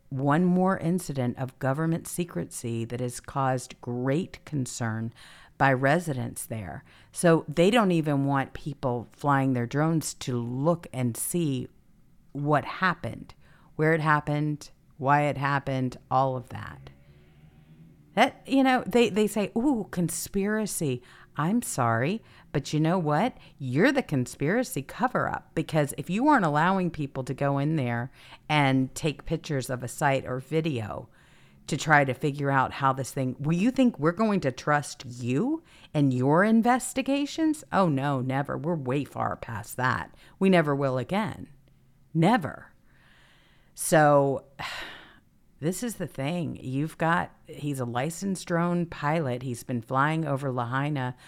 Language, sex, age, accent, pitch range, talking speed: English, female, 50-69, American, 130-165 Hz, 145 wpm